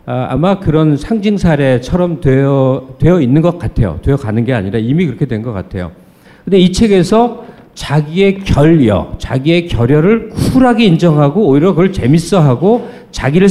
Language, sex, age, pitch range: Korean, male, 50-69, 125-190 Hz